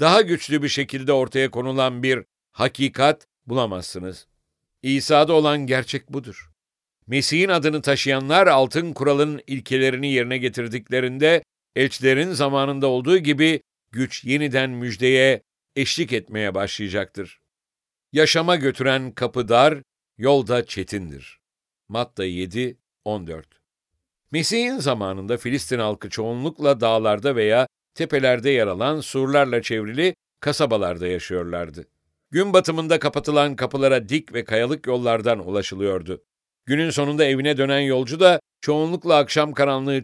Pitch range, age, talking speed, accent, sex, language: 115-150 Hz, 60-79, 105 wpm, Turkish, male, English